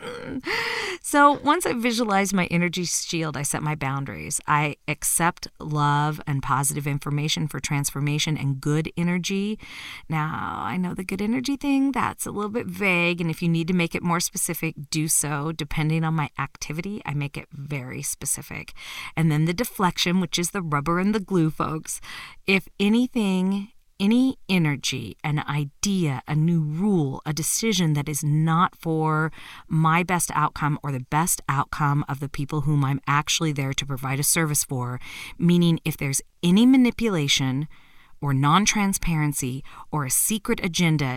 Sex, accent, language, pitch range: female, American, English, 145-185 Hz